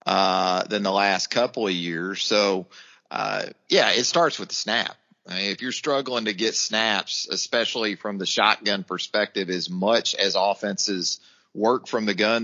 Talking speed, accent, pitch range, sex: 175 wpm, American, 95-125 Hz, male